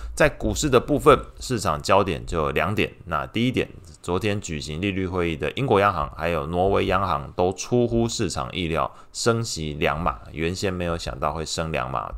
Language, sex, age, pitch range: Chinese, male, 20-39, 75-95 Hz